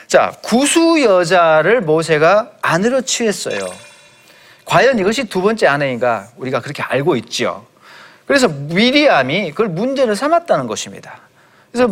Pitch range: 135-225 Hz